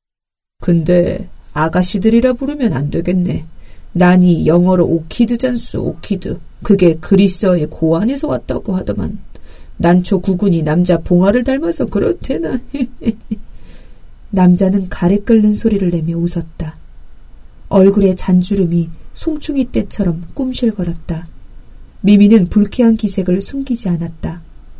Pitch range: 175-220 Hz